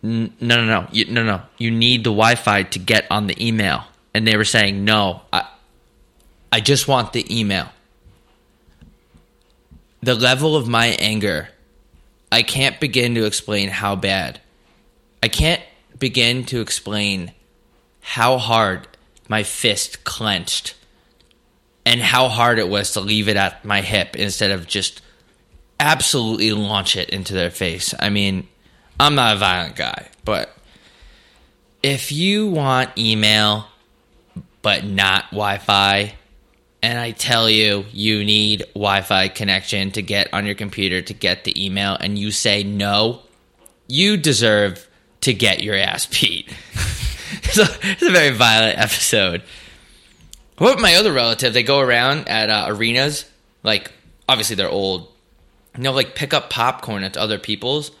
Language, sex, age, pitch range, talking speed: English, male, 20-39, 100-120 Hz, 145 wpm